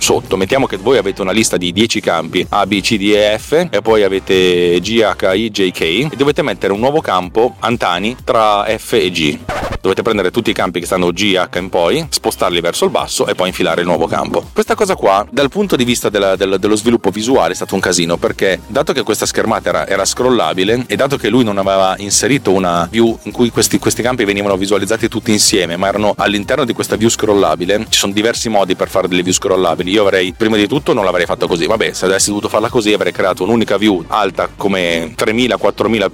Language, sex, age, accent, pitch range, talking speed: Italian, male, 30-49, native, 95-115 Hz, 225 wpm